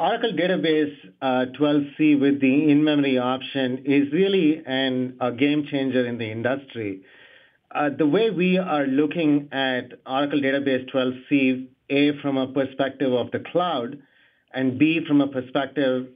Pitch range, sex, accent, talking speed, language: 130-145 Hz, male, Indian, 135 wpm, English